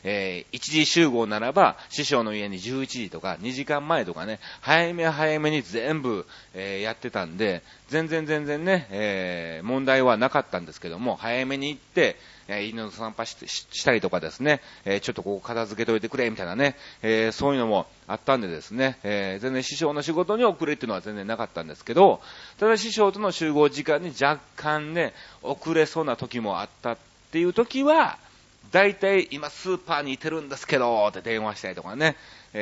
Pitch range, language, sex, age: 110-165 Hz, Japanese, male, 40-59